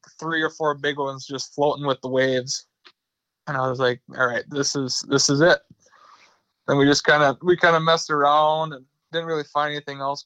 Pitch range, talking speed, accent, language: 145-170 Hz, 215 wpm, American, English